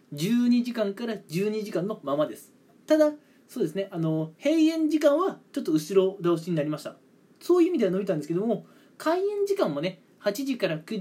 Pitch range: 160-230 Hz